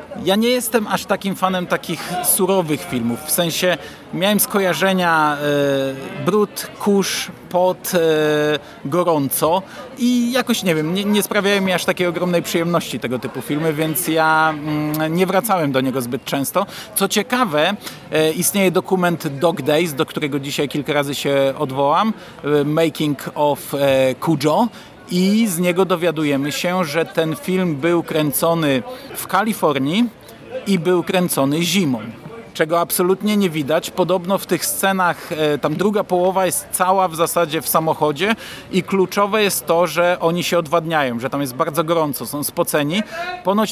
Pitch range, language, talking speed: 150-190 Hz, Polish, 145 wpm